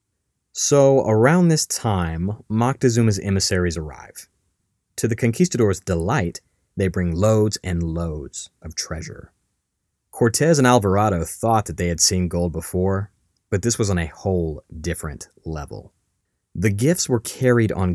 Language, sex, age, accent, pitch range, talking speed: English, male, 30-49, American, 90-110 Hz, 135 wpm